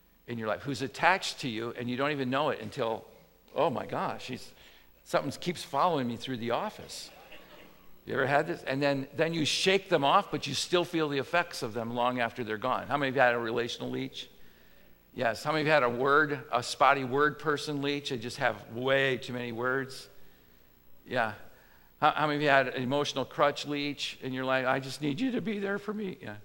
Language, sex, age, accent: English, male, 50-69, American